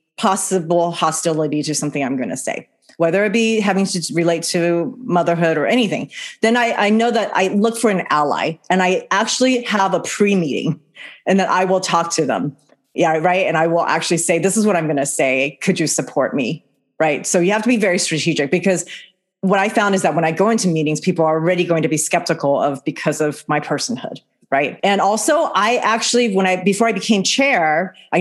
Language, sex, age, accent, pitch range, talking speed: English, female, 30-49, American, 160-205 Hz, 215 wpm